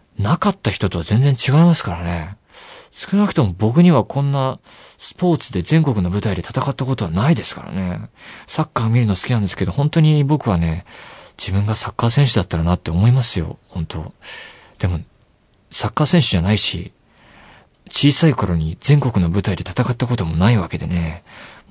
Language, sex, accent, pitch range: Japanese, male, native, 90-130 Hz